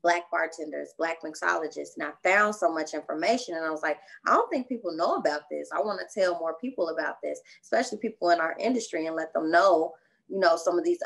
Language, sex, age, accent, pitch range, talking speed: English, female, 20-39, American, 150-185 Hz, 235 wpm